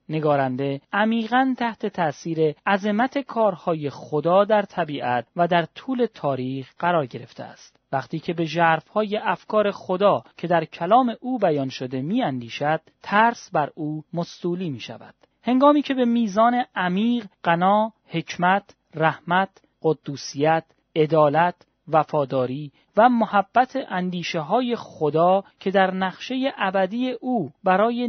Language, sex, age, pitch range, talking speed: Persian, male, 40-59, 155-220 Hz, 120 wpm